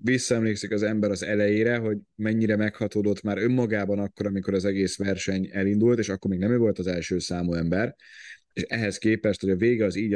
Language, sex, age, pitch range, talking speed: Hungarian, male, 30-49, 100-115 Hz, 200 wpm